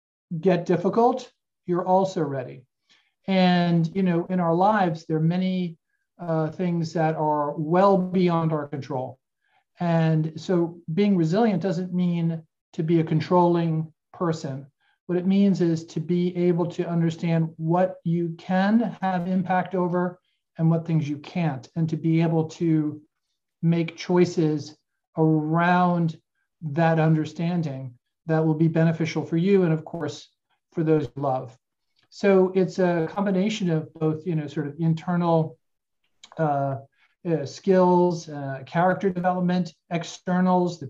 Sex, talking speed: male, 140 wpm